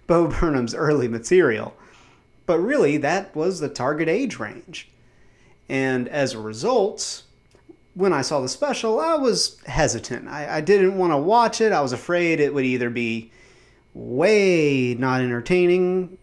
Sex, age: male, 30-49